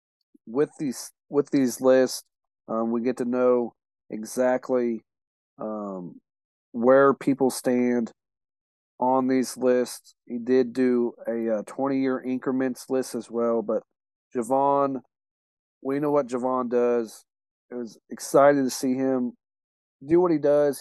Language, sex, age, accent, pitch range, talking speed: English, male, 40-59, American, 115-135 Hz, 130 wpm